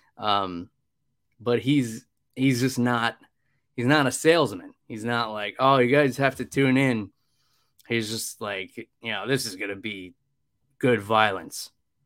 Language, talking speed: English, 160 wpm